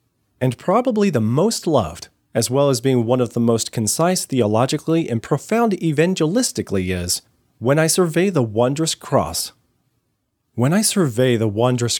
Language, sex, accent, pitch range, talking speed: English, male, American, 115-145 Hz, 150 wpm